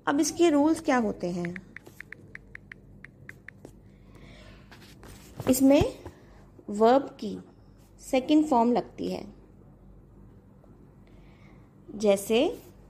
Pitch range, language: 215-285 Hz, Hindi